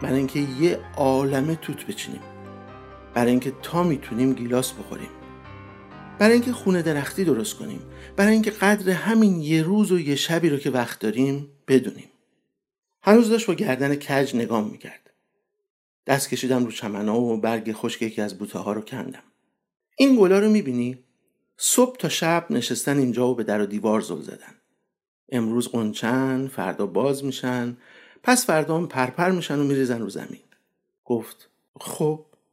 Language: Persian